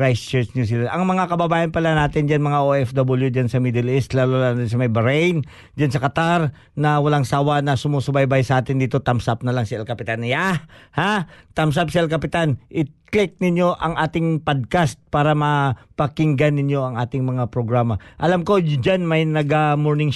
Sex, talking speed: male, 190 wpm